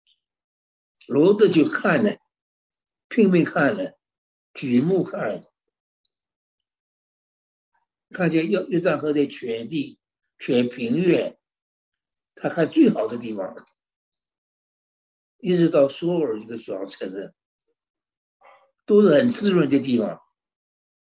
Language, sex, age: Chinese, male, 60-79